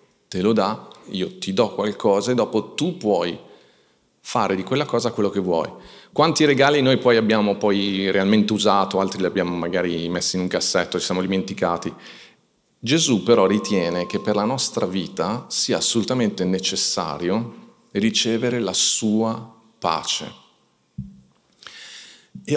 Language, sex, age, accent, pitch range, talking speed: Italian, male, 40-59, native, 95-110 Hz, 140 wpm